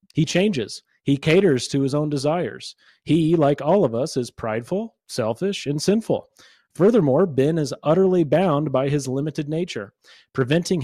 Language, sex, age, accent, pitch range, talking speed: English, male, 30-49, American, 130-170 Hz, 155 wpm